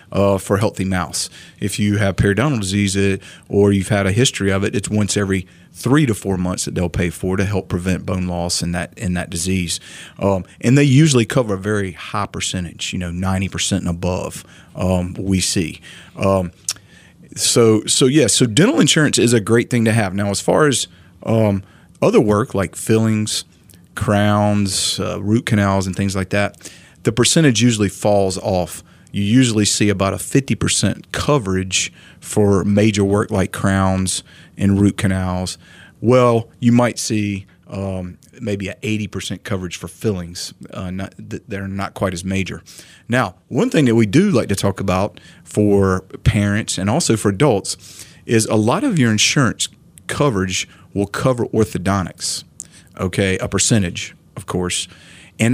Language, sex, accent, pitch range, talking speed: English, male, American, 95-110 Hz, 165 wpm